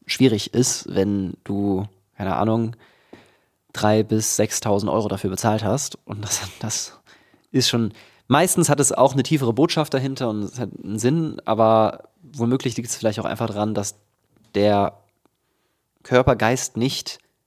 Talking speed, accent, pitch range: 150 wpm, German, 100-125 Hz